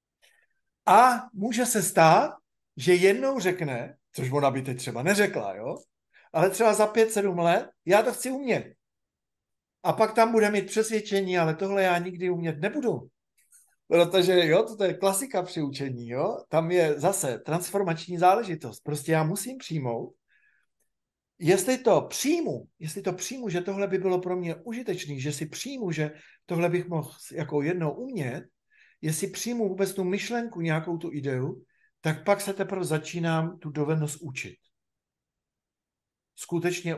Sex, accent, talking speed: male, native, 150 wpm